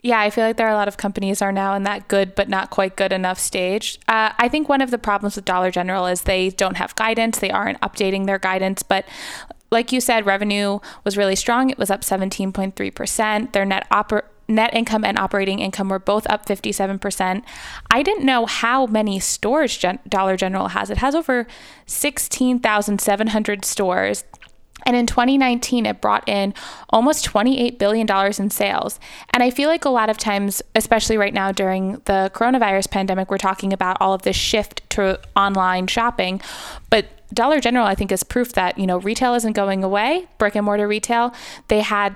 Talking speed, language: 190 wpm, English